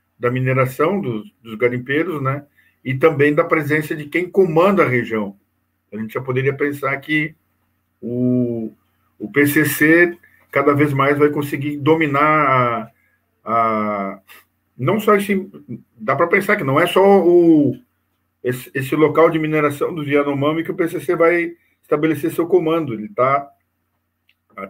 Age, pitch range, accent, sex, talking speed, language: 50-69, 120-150 Hz, Brazilian, male, 145 wpm, Portuguese